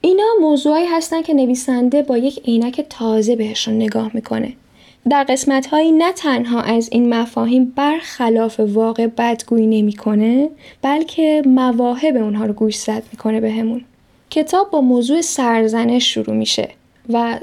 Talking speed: 140 wpm